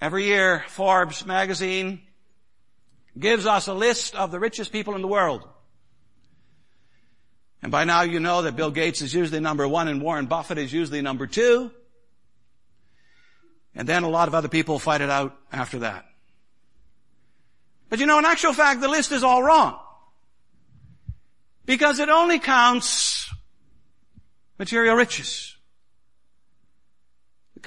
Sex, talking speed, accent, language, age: male, 140 wpm, American, English, 60-79